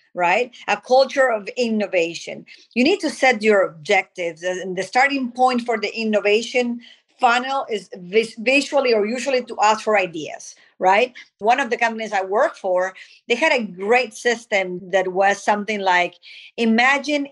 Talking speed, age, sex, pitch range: 155 wpm, 40-59, female, 200-255 Hz